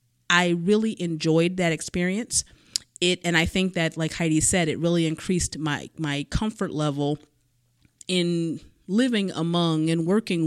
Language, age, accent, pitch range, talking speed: English, 30-49, American, 155-190 Hz, 145 wpm